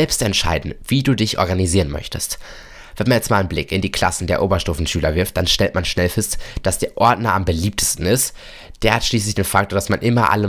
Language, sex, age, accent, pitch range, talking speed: German, male, 20-39, German, 90-115 Hz, 225 wpm